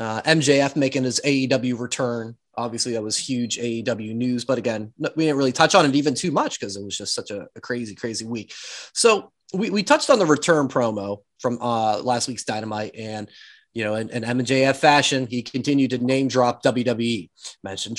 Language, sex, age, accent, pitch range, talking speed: English, male, 30-49, American, 115-150 Hz, 200 wpm